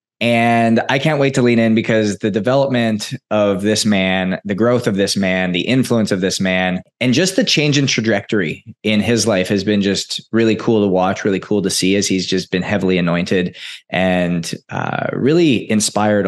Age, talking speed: 20-39, 195 wpm